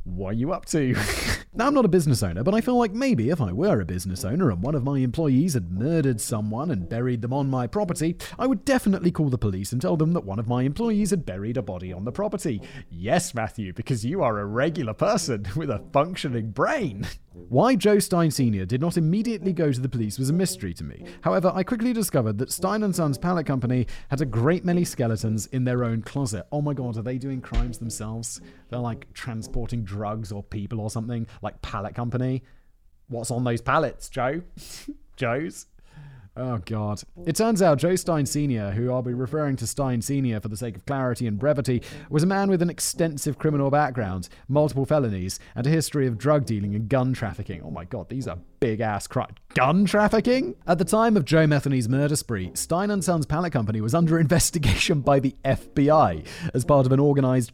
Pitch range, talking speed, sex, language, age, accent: 110-160 Hz, 215 wpm, male, English, 30-49, British